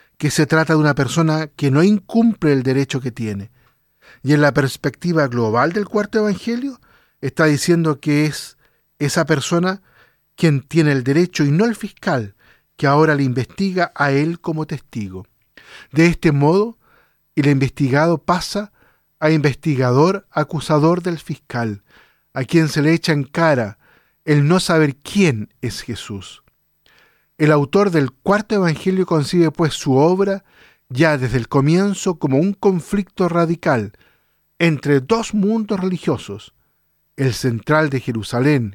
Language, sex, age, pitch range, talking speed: Spanish, male, 50-69, 130-170 Hz, 140 wpm